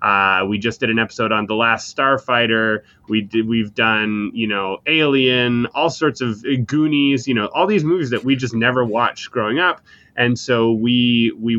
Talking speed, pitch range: 195 wpm, 110-130 Hz